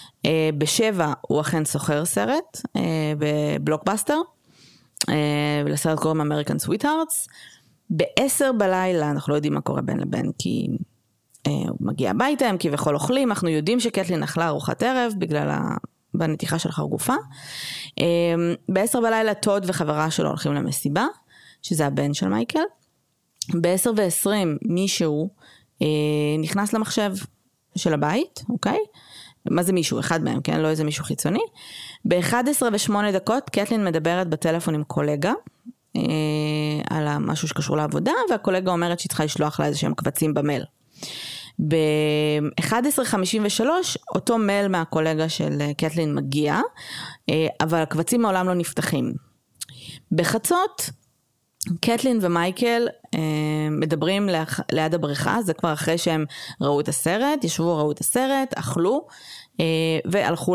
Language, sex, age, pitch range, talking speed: Hebrew, female, 20-39, 155-210 Hz, 125 wpm